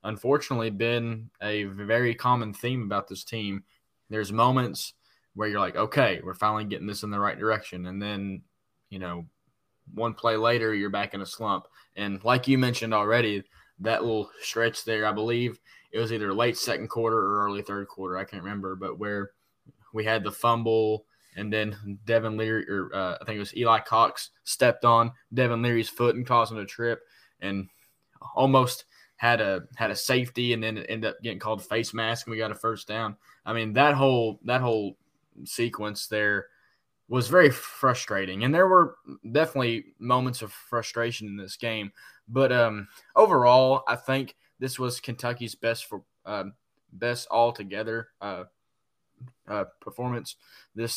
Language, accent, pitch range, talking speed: English, American, 105-120 Hz, 170 wpm